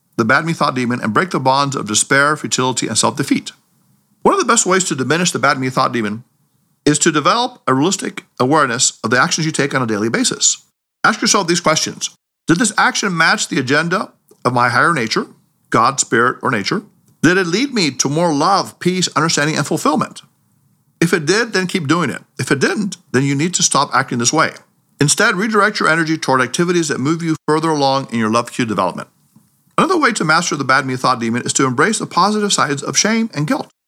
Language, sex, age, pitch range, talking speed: English, male, 50-69, 130-175 Hz, 205 wpm